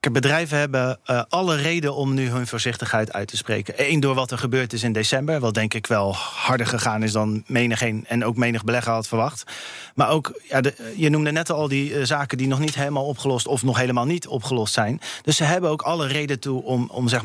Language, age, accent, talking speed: Dutch, 40-59, Dutch, 235 wpm